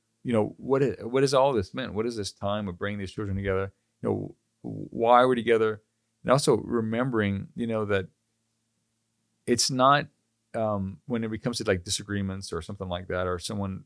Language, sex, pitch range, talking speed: English, male, 95-115 Hz, 190 wpm